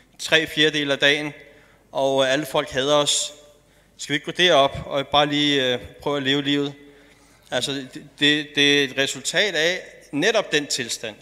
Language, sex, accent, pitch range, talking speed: Danish, male, native, 135-165 Hz, 165 wpm